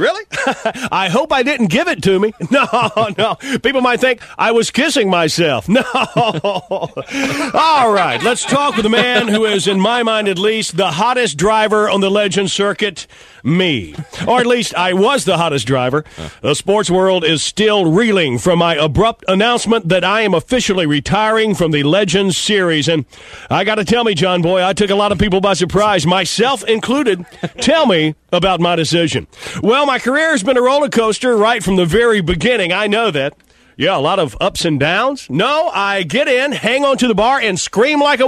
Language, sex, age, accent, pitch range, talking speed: English, male, 50-69, American, 185-255 Hz, 200 wpm